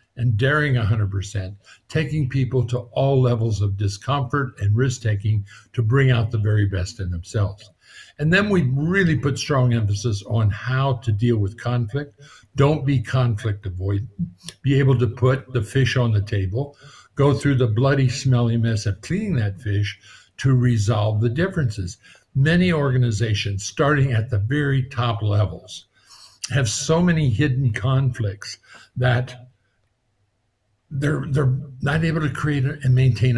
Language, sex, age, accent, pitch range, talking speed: Spanish, male, 60-79, American, 110-135 Hz, 150 wpm